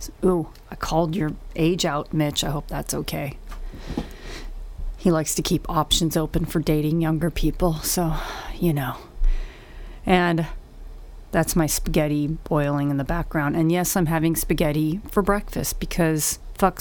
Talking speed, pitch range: 145 wpm, 150-180 Hz